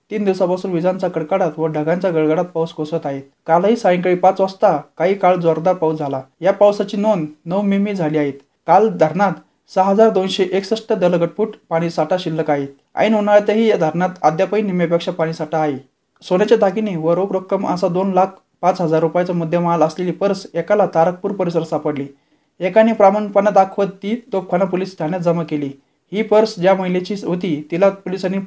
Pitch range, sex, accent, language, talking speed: 160-200 Hz, male, native, Marathi, 160 wpm